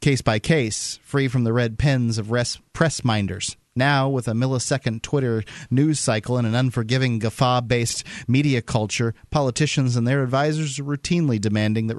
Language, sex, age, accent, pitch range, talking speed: English, male, 30-49, American, 120-160 Hz, 160 wpm